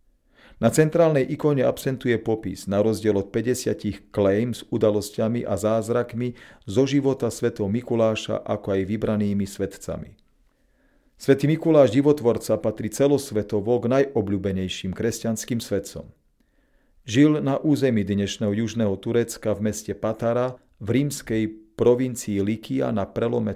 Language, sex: Slovak, male